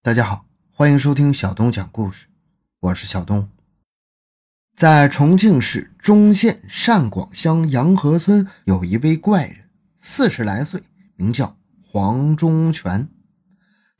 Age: 20-39